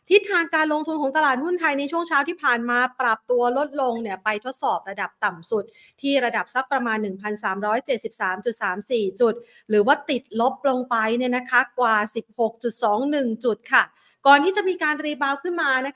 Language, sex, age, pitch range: Thai, female, 30-49, 215-265 Hz